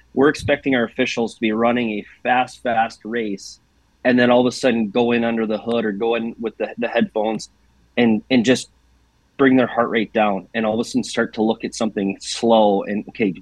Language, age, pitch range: English, 30-49, 105-120 Hz